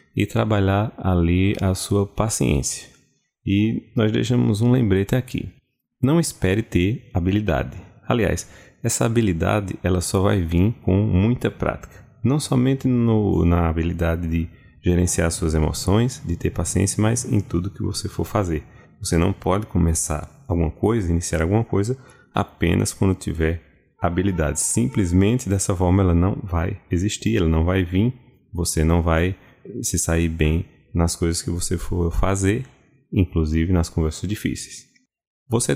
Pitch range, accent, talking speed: 85-110 Hz, Brazilian, 145 wpm